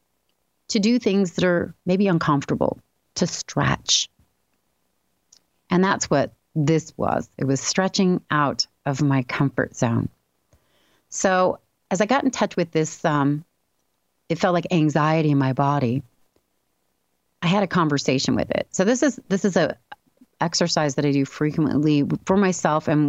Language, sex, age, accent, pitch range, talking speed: English, female, 30-49, American, 135-180 Hz, 150 wpm